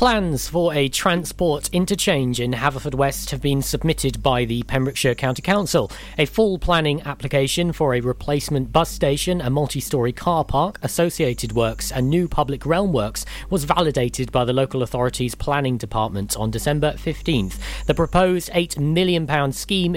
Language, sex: English, male